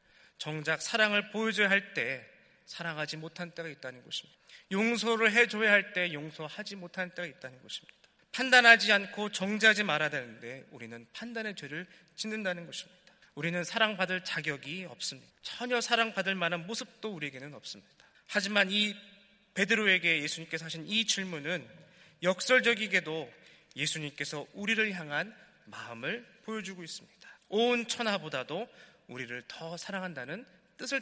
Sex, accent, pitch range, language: male, native, 160-215 Hz, Korean